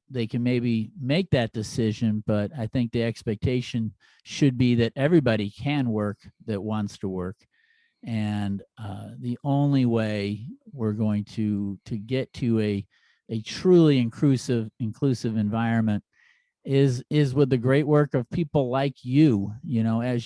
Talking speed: 150 wpm